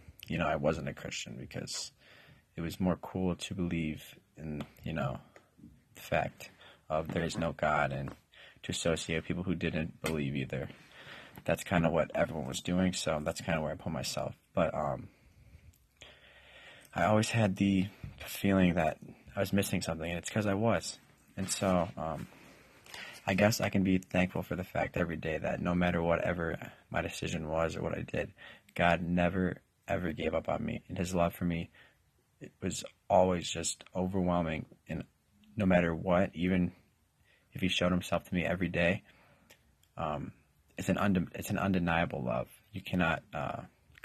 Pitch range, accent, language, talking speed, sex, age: 80-95 Hz, American, English, 175 wpm, male, 20-39